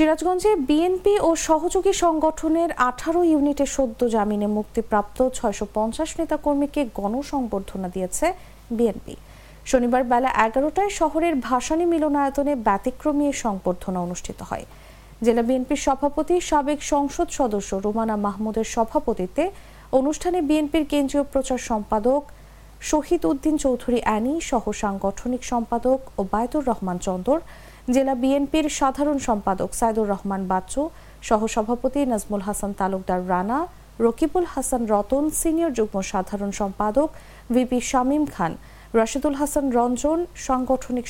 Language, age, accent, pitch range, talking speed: English, 50-69, Indian, 220-295 Hz, 110 wpm